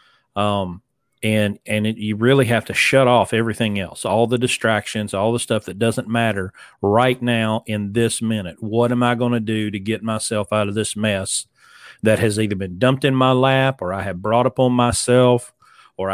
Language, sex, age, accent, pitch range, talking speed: English, male, 40-59, American, 105-125 Hz, 205 wpm